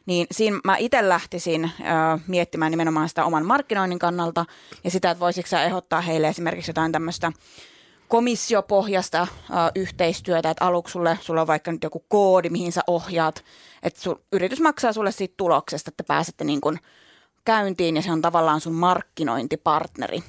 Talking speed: 155 wpm